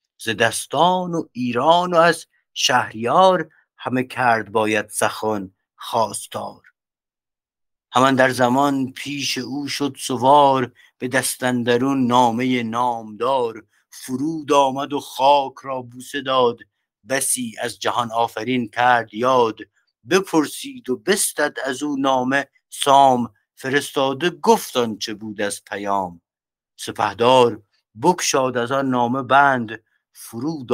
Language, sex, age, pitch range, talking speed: English, male, 50-69, 100-135 Hz, 110 wpm